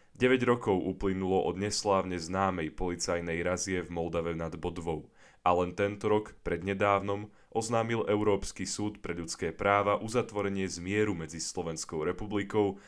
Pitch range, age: 85-105 Hz, 10-29